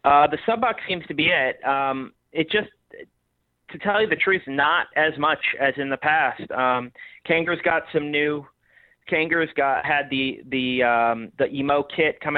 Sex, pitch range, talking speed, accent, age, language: male, 125-140 Hz, 190 wpm, American, 30-49, English